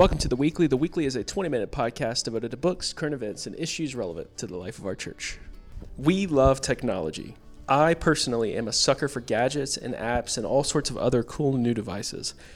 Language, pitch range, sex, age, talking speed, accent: English, 115-145 Hz, male, 30-49, 210 wpm, American